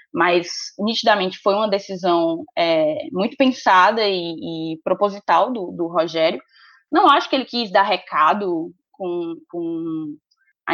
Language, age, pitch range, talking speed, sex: Portuguese, 10-29, 180-235 Hz, 135 wpm, female